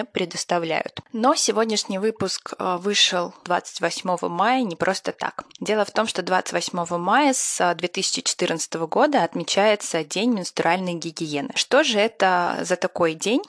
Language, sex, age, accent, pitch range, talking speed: Russian, female, 20-39, native, 175-220 Hz, 130 wpm